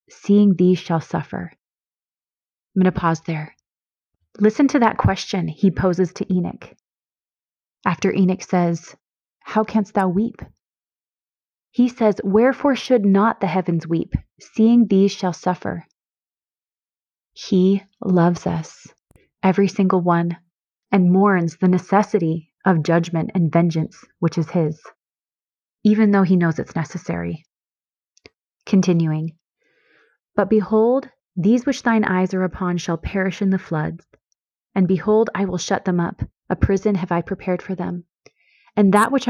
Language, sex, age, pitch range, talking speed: English, female, 30-49, 175-210 Hz, 135 wpm